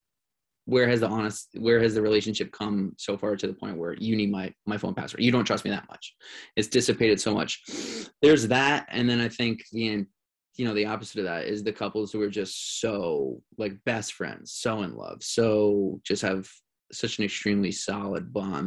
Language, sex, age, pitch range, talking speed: English, male, 20-39, 105-120 Hz, 205 wpm